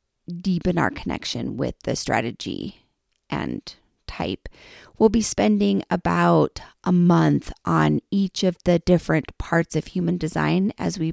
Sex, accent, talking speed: female, American, 135 wpm